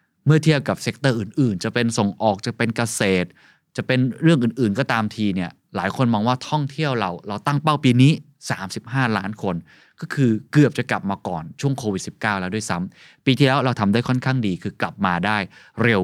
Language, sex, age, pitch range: Thai, male, 20-39, 105-145 Hz